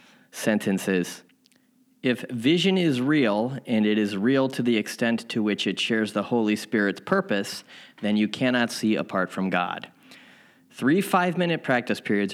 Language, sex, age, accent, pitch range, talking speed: English, male, 30-49, American, 100-135 Hz, 150 wpm